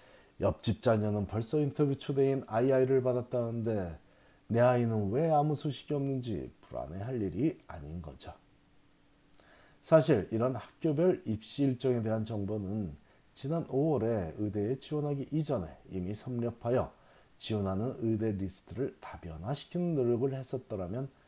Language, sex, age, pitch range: Korean, male, 40-59, 95-135 Hz